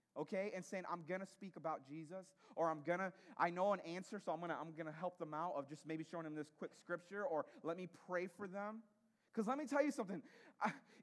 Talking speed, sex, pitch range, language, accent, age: 250 wpm, male, 185-260 Hz, English, American, 30-49